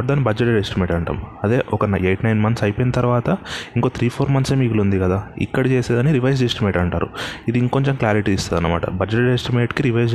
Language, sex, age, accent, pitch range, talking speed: Telugu, male, 20-39, native, 100-120 Hz, 190 wpm